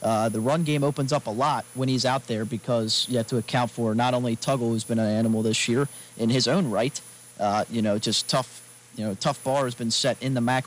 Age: 40-59